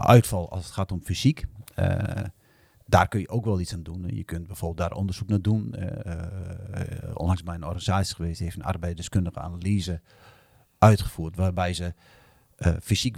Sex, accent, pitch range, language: male, Dutch, 90-115 Hz, English